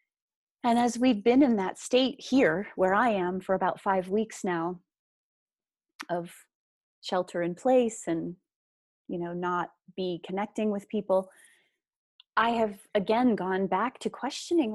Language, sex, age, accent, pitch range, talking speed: English, female, 30-49, American, 180-220 Hz, 140 wpm